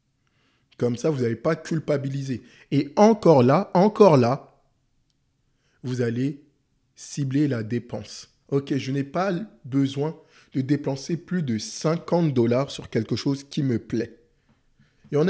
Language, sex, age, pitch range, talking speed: French, male, 20-39, 135-180 Hz, 140 wpm